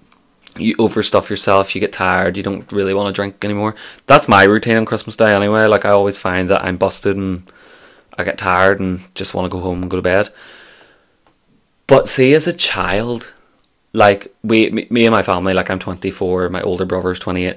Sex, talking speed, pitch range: male, 200 wpm, 95-100 Hz